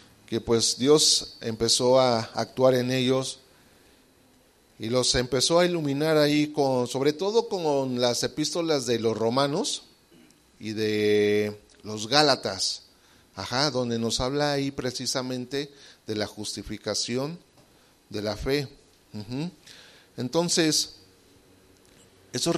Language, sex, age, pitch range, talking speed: English, male, 40-59, 115-150 Hz, 110 wpm